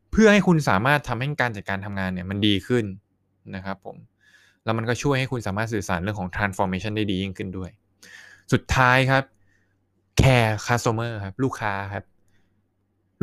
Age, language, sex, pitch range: 20-39, Thai, male, 95-125 Hz